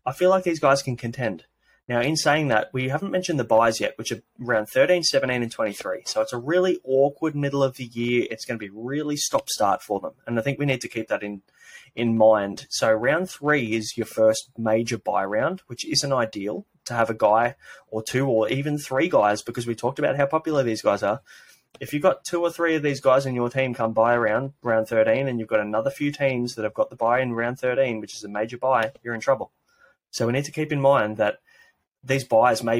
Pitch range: 110-140 Hz